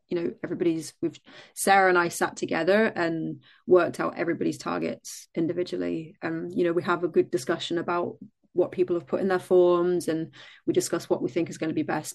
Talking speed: 210 wpm